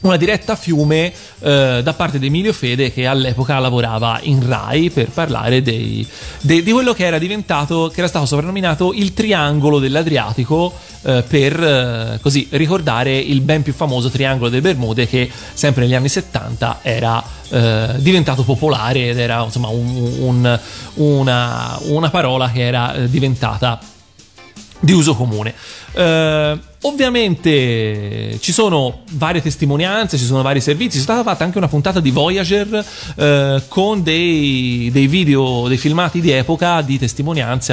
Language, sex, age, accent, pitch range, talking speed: Italian, male, 30-49, native, 125-160 Hz, 140 wpm